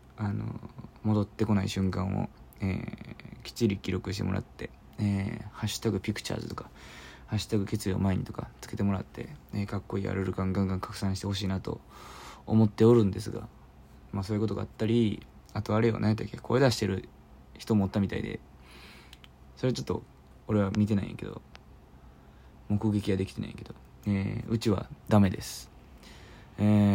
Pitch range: 70-110 Hz